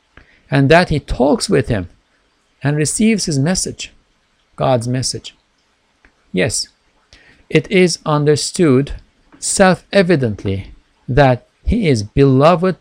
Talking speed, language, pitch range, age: 100 wpm, English, 105-140 Hz, 60-79